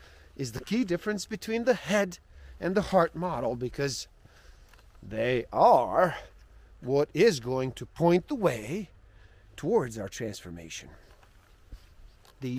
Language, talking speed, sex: English, 120 wpm, male